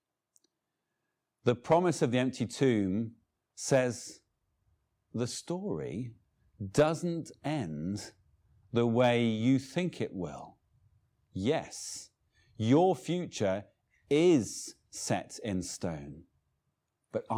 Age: 50-69